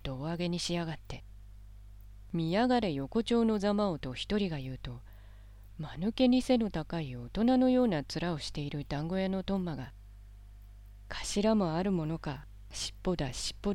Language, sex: Japanese, female